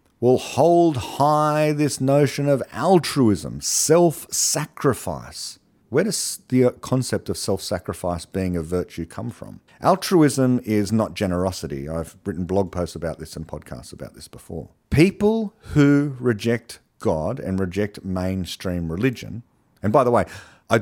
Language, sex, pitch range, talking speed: English, male, 95-135 Hz, 135 wpm